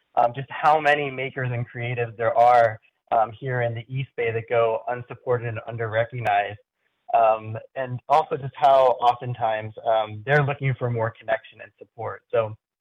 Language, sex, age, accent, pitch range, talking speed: English, male, 20-39, American, 115-130 Hz, 170 wpm